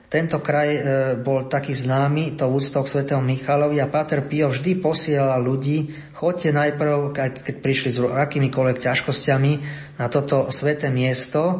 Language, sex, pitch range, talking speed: Slovak, male, 125-145 Hz, 135 wpm